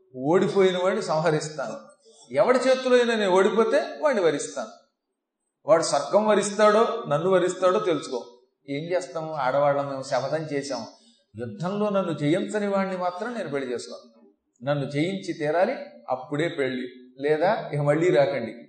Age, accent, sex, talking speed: 40-59, native, male, 115 wpm